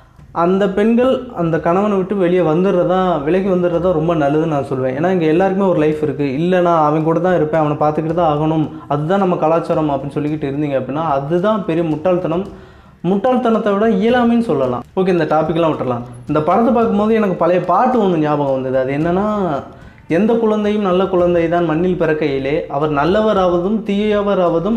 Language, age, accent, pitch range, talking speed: Tamil, 20-39, native, 150-195 Hz, 165 wpm